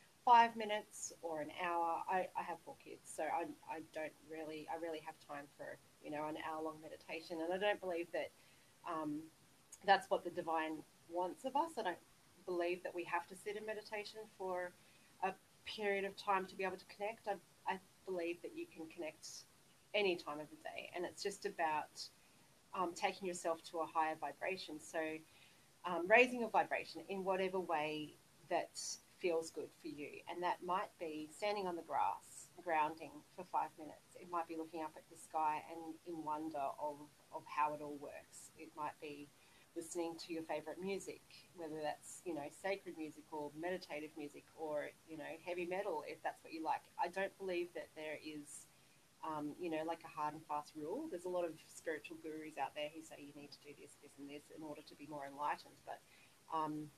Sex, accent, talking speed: female, Australian, 200 wpm